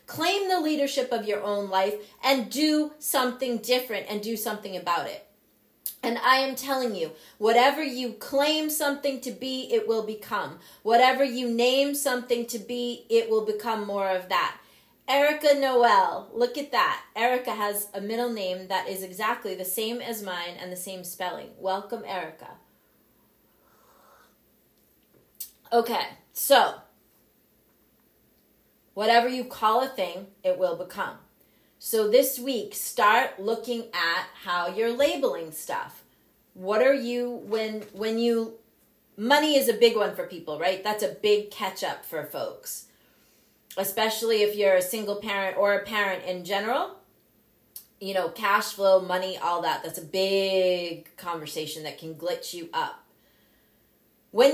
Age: 30-49